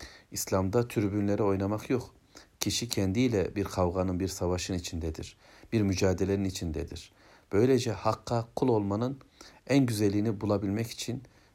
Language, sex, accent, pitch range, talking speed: Turkish, male, native, 95-110 Hz, 115 wpm